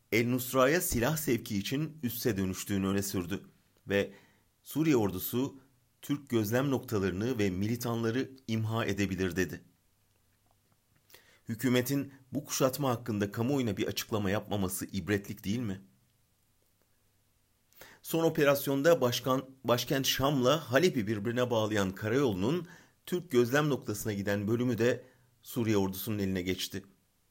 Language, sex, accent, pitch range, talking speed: German, male, Turkish, 100-125 Hz, 110 wpm